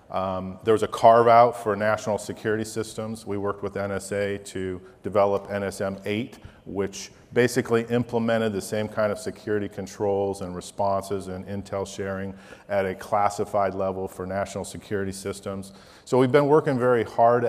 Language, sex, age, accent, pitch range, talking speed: English, male, 40-59, American, 100-115 Hz, 150 wpm